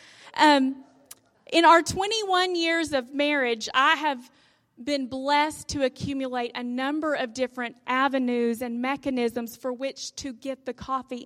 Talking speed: 140 wpm